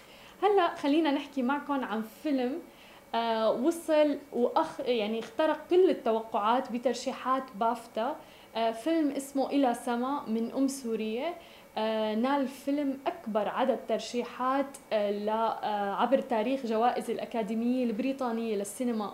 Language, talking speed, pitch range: Arabic, 115 wpm, 225-275 Hz